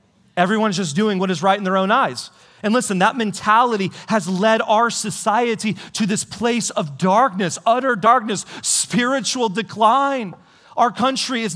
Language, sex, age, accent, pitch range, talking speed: English, male, 40-59, American, 210-255 Hz, 155 wpm